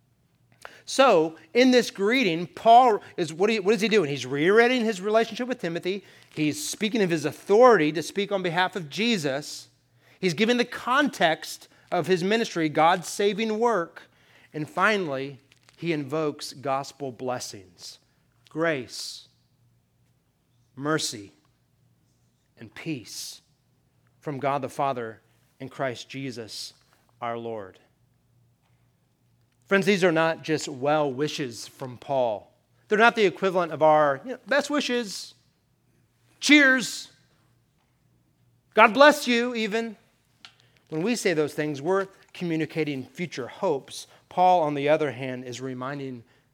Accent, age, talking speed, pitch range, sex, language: American, 30-49, 120 wpm, 130-185 Hz, male, English